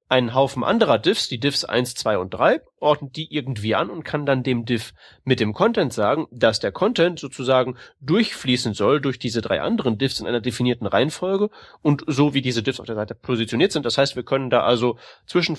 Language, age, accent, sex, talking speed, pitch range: German, 30-49, German, male, 210 wpm, 110-135 Hz